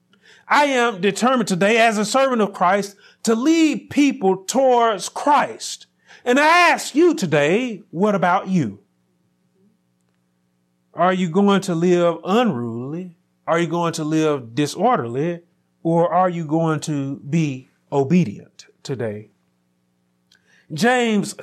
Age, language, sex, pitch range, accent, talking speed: 40-59, English, male, 150-245 Hz, American, 120 wpm